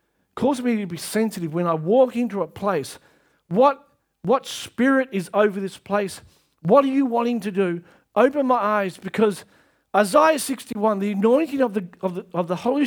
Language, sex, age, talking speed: English, male, 50-69, 180 wpm